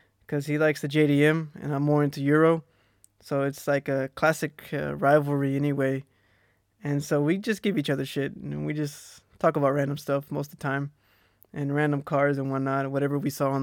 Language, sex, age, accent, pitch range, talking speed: English, male, 20-39, American, 110-150 Hz, 205 wpm